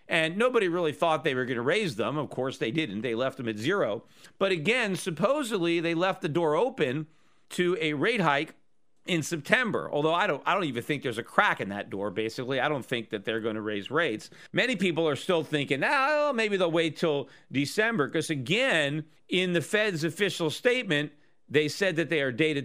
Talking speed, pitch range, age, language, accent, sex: 210 wpm, 145-185 Hz, 40-59, English, American, male